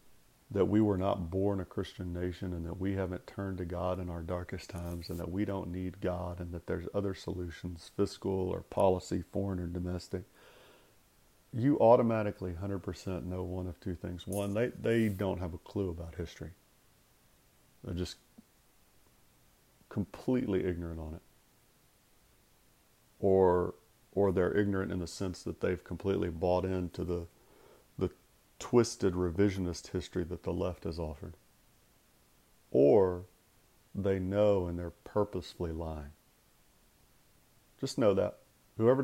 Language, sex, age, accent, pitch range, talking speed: English, male, 40-59, American, 90-100 Hz, 140 wpm